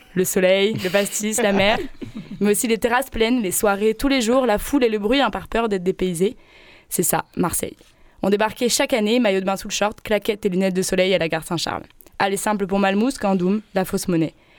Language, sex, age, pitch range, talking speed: French, female, 20-39, 195-245 Hz, 230 wpm